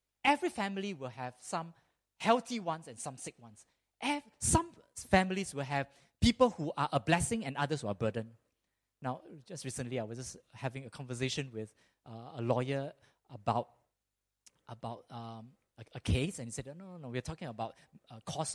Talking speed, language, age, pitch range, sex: 190 wpm, English, 20-39, 115-175 Hz, male